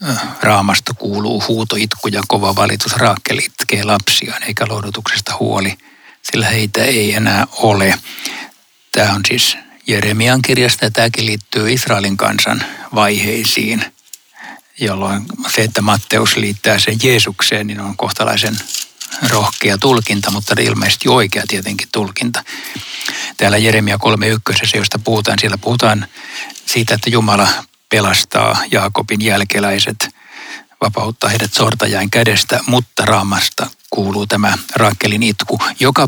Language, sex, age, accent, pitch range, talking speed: Finnish, male, 60-79, native, 100-115 Hz, 115 wpm